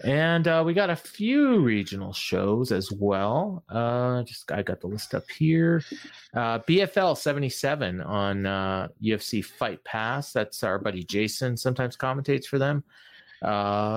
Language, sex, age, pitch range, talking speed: English, male, 30-49, 100-130 Hz, 150 wpm